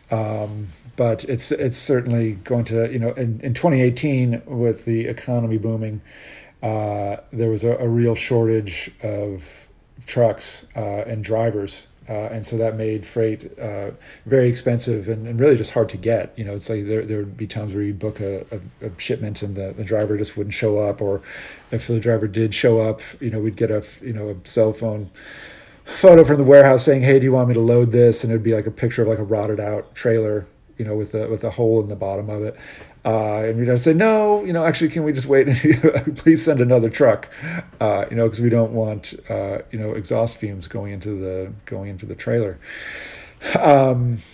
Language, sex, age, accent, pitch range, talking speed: English, male, 40-59, American, 105-120 Hz, 215 wpm